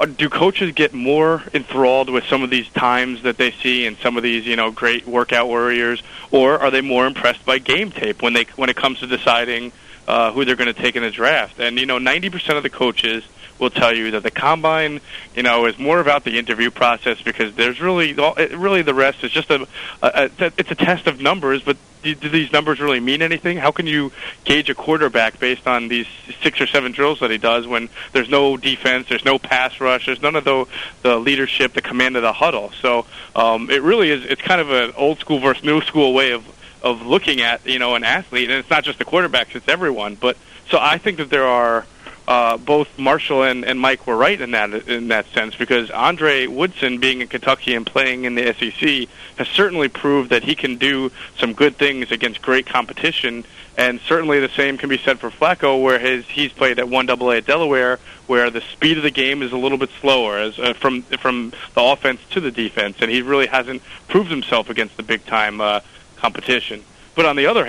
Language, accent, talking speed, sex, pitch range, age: English, American, 225 wpm, male, 120-140 Hz, 30-49